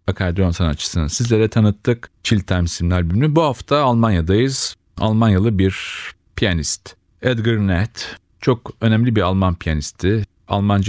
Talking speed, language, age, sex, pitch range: 120 wpm, Turkish, 40-59, male, 95-115 Hz